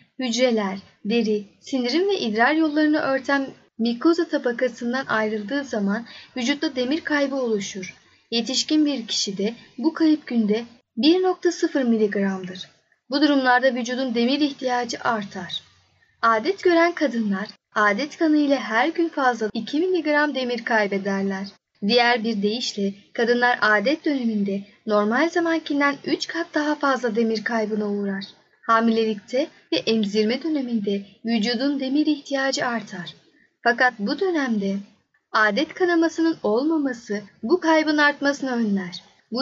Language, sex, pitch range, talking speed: Turkish, female, 215-290 Hz, 115 wpm